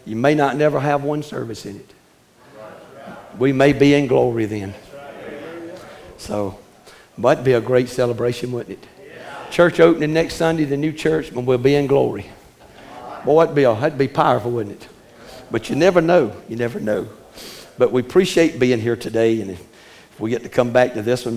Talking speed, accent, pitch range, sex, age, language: 190 wpm, American, 110-140 Hz, male, 60-79, English